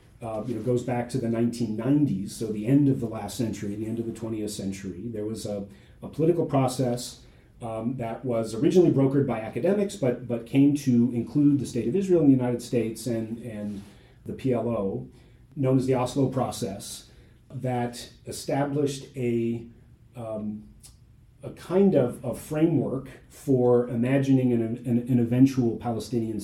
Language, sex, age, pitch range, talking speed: English, male, 30-49, 110-130 Hz, 165 wpm